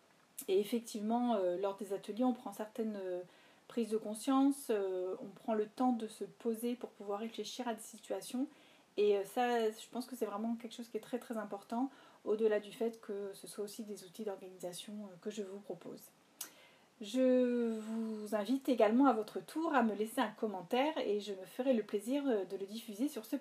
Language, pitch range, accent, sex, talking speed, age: French, 215-275 Hz, French, female, 190 wpm, 30-49